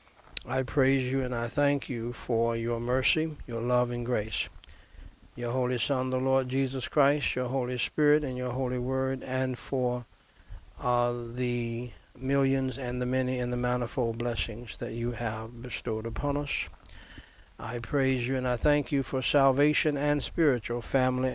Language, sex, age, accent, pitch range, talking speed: English, male, 60-79, American, 115-130 Hz, 165 wpm